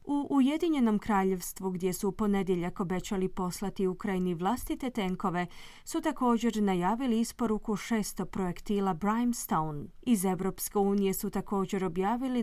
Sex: female